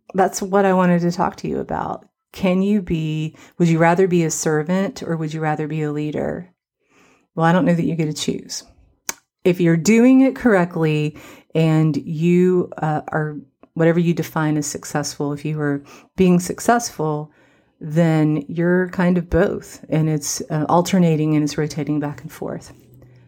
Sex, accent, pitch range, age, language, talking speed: female, American, 155-180 Hz, 40-59, English, 175 wpm